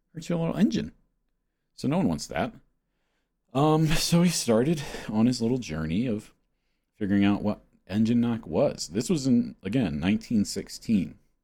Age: 40-59